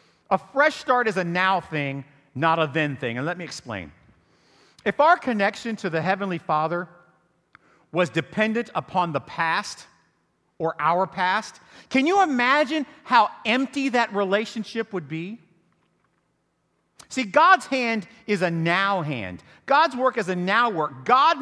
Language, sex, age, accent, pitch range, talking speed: English, male, 40-59, American, 175-270 Hz, 150 wpm